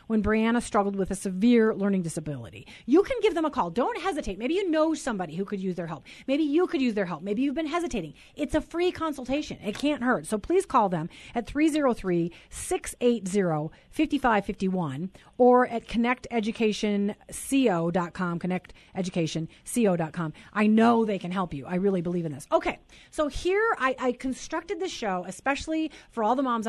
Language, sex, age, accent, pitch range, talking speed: English, female, 40-59, American, 195-265 Hz, 170 wpm